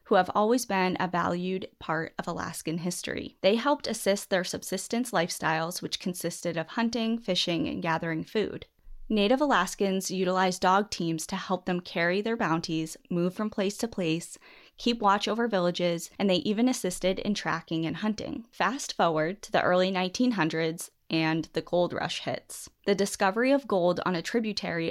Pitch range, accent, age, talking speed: 165-200 Hz, American, 20-39, 170 wpm